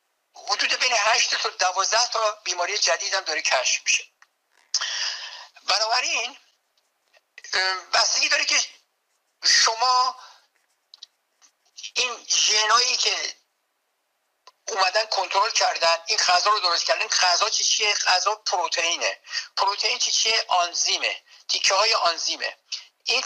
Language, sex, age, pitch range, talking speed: Persian, male, 60-79, 175-235 Hz, 100 wpm